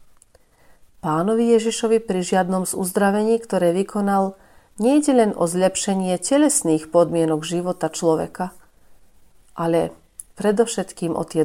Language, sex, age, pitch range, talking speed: Slovak, female, 40-59, 170-215 Hz, 100 wpm